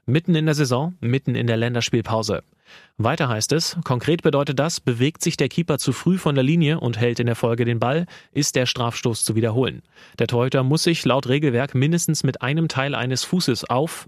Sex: male